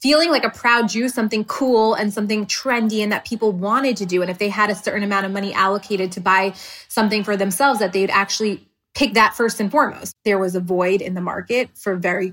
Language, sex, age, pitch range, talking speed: English, female, 20-39, 190-220 Hz, 235 wpm